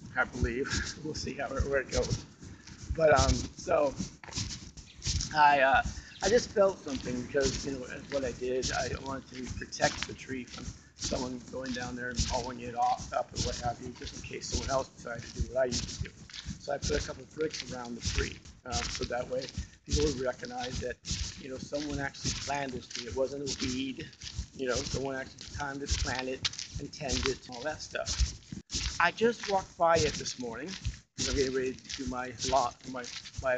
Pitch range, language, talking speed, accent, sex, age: 125-155 Hz, English, 210 wpm, American, male, 50-69